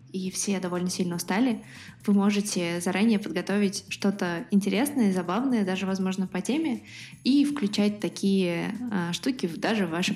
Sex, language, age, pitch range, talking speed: female, Russian, 20-39, 175-210 Hz, 135 wpm